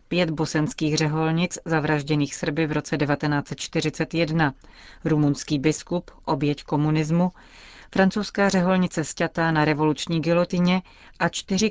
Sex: female